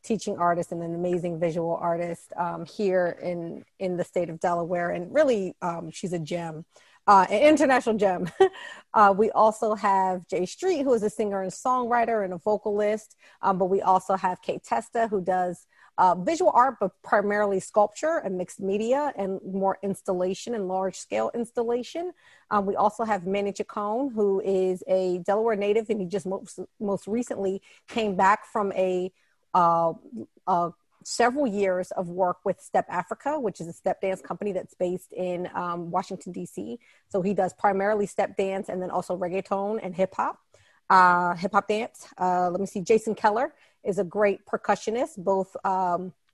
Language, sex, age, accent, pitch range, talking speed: English, female, 40-59, American, 185-220 Hz, 175 wpm